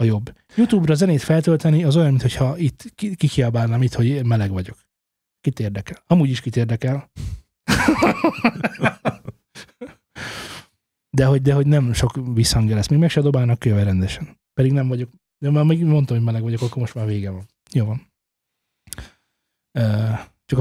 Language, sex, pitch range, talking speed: Hungarian, male, 115-150 Hz, 145 wpm